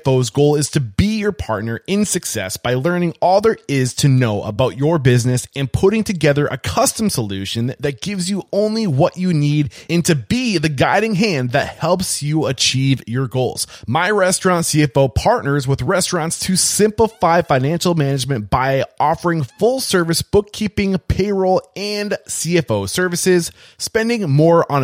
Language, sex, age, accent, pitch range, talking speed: English, male, 20-39, American, 125-180 Hz, 160 wpm